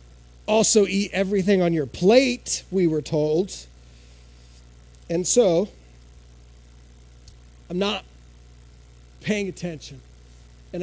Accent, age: American, 30-49